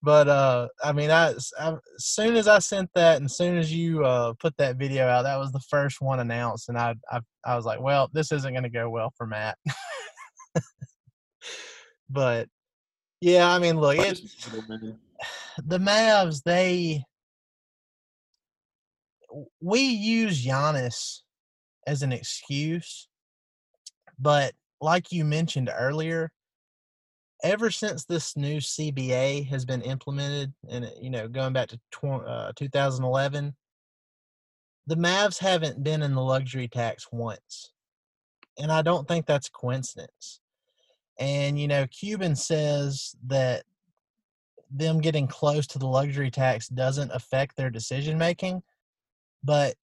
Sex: male